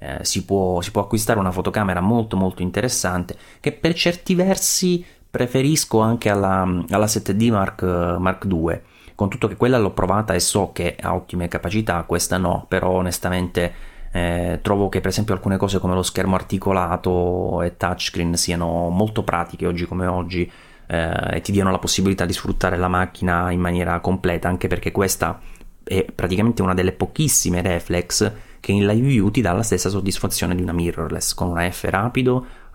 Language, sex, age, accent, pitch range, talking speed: English, male, 30-49, Italian, 90-110 Hz, 175 wpm